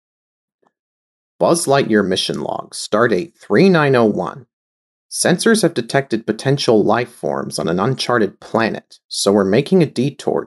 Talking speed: 140 wpm